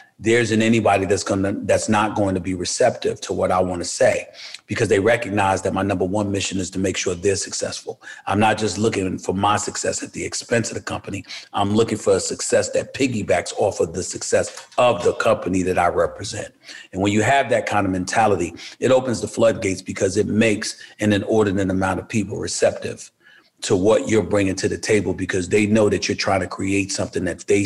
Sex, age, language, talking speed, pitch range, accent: male, 40-59, English, 215 wpm, 100-115 Hz, American